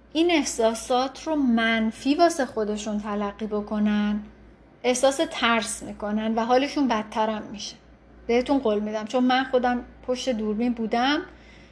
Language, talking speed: Persian, 125 wpm